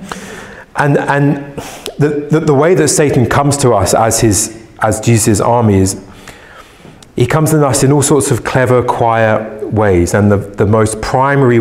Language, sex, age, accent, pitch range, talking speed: English, male, 30-49, British, 115-165 Hz, 170 wpm